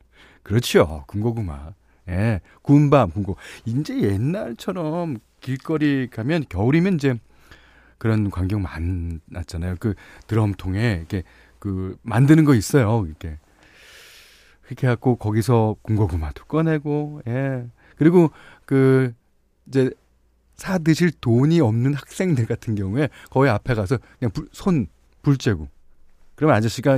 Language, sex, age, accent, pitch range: Korean, male, 40-59, native, 90-140 Hz